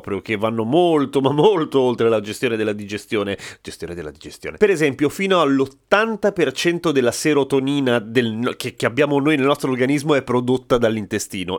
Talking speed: 155 wpm